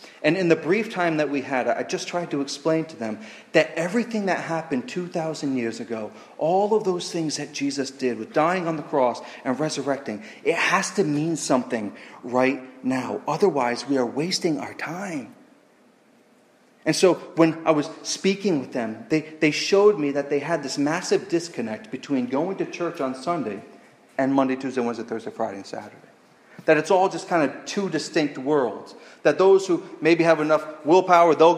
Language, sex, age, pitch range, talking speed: English, male, 30-49, 140-190 Hz, 185 wpm